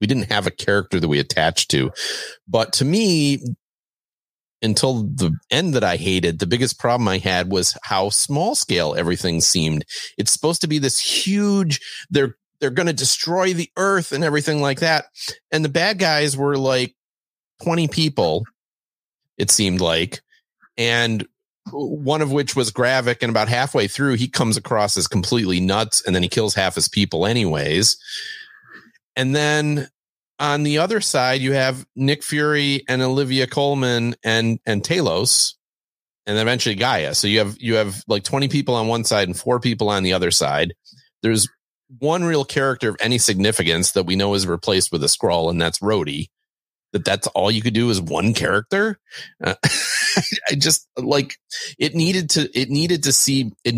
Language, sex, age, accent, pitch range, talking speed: English, male, 40-59, American, 105-150 Hz, 175 wpm